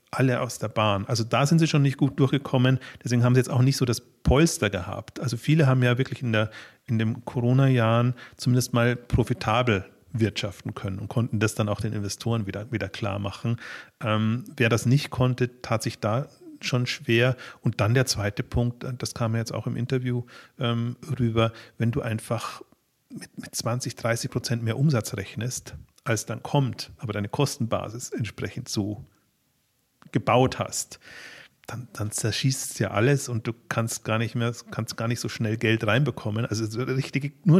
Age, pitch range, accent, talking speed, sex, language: 40-59, 115-130 Hz, German, 185 wpm, male, German